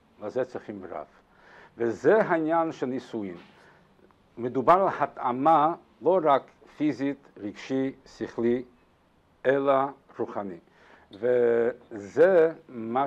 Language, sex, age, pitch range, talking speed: Hebrew, male, 60-79, 115-160 Hz, 85 wpm